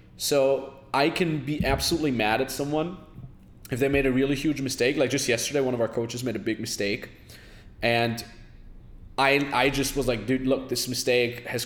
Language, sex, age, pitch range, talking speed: English, male, 20-39, 115-140 Hz, 190 wpm